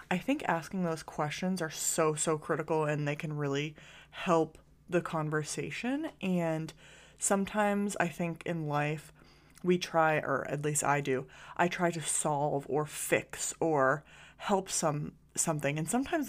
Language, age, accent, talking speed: English, 20-39, American, 150 wpm